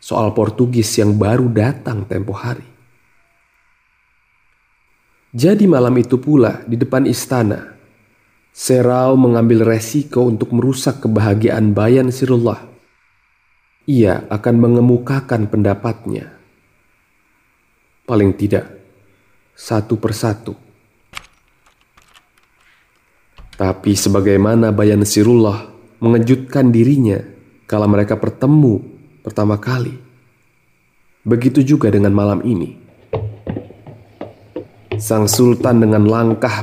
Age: 30-49